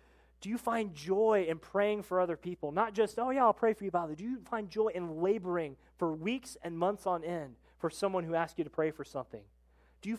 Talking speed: 240 wpm